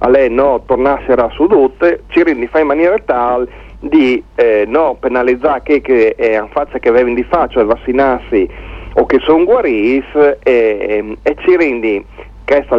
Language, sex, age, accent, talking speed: Italian, male, 40-59, native, 175 wpm